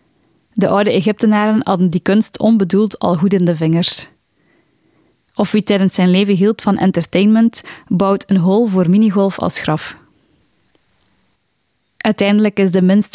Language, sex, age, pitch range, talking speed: Dutch, female, 10-29, 180-205 Hz, 140 wpm